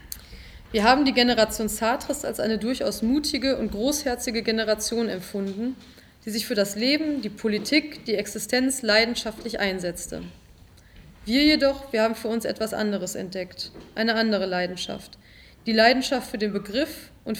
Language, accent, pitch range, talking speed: German, German, 205-250 Hz, 145 wpm